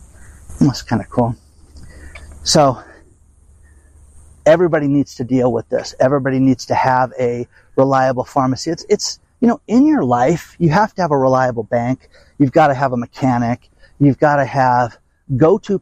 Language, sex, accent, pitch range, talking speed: English, male, American, 110-140 Hz, 165 wpm